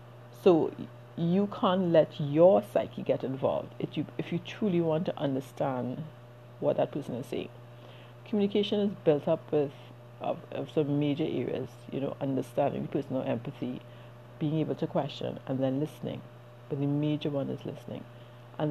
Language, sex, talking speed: English, female, 160 wpm